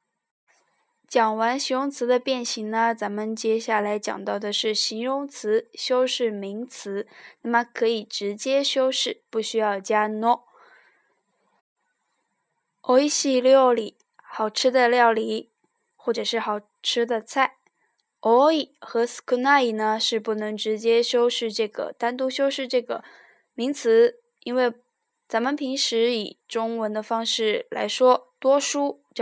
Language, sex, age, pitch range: Chinese, female, 10-29, 220-265 Hz